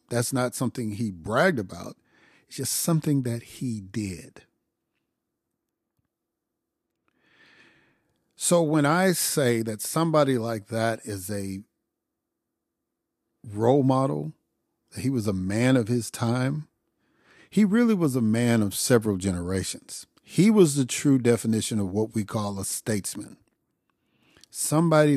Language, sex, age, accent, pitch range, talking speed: English, male, 50-69, American, 100-130 Hz, 125 wpm